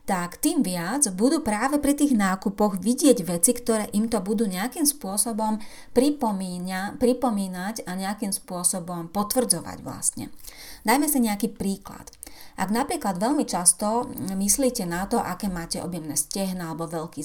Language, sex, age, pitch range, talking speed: Slovak, female, 30-49, 175-230 Hz, 140 wpm